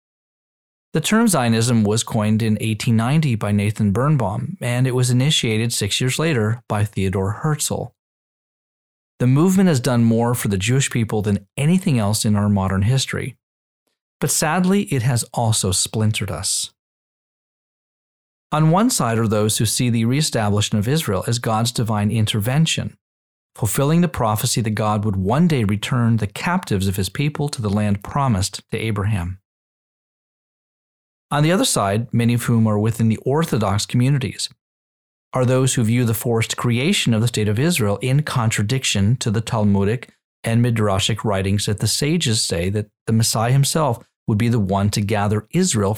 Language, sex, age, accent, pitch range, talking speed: English, male, 30-49, American, 105-130 Hz, 165 wpm